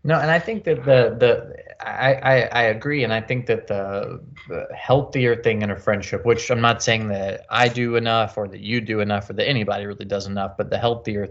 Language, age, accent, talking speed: English, 20-39, American, 235 wpm